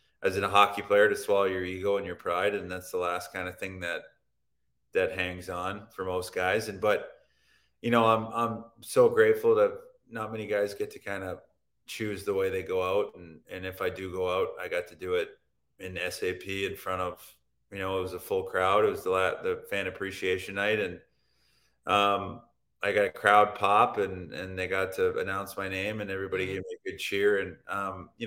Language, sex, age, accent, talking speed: English, male, 30-49, American, 220 wpm